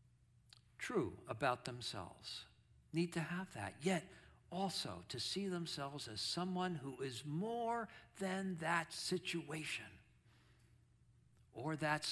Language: English